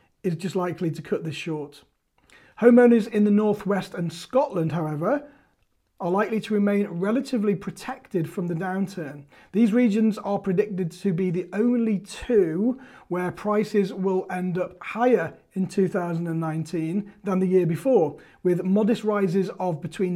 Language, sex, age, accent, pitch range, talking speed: English, male, 30-49, British, 170-205 Hz, 145 wpm